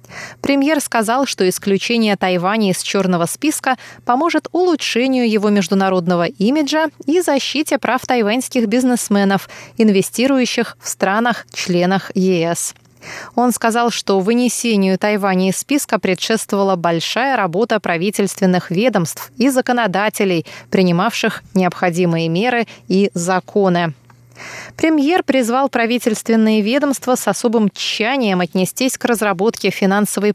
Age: 20-39